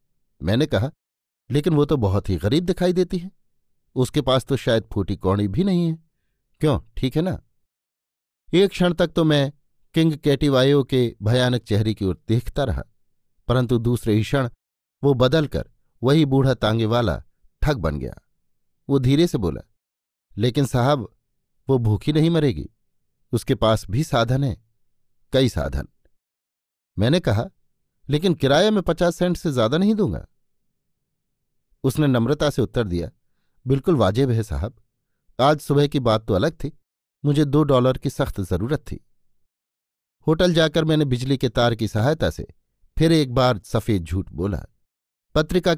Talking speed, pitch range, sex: 155 wpm, 110-150 Hz, male